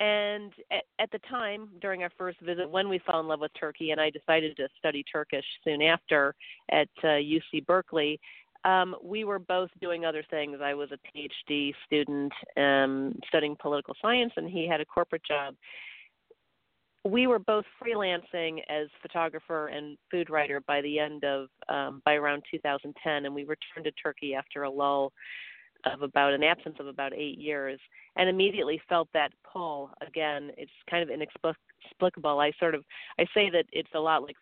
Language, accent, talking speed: English, American, 175 wpm